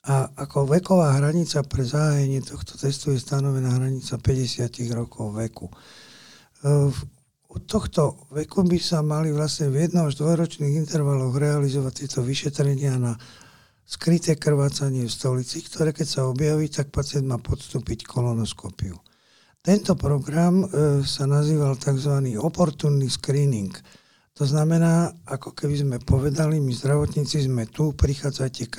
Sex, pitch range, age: male, 125-150 Hz, 60-79